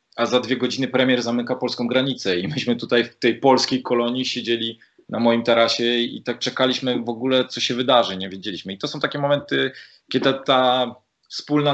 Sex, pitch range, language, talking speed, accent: male, 100-130 Hz, Polish, 190 wpm, native